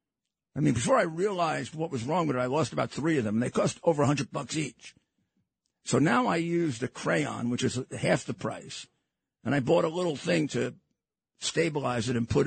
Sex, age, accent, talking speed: male, 50-69, American, 215 wpm